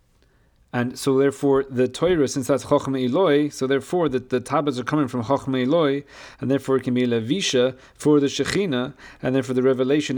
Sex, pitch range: male, 105-135 Hz